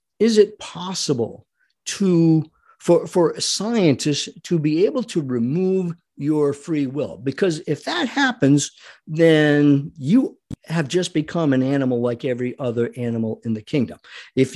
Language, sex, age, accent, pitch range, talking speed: English, male, 50-69, American, 135-185 Hz, 140 wpm